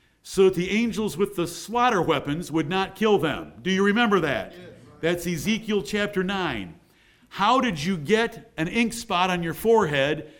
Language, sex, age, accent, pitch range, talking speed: English, male, 50-69, American, 165-215 Hz, 175 wpm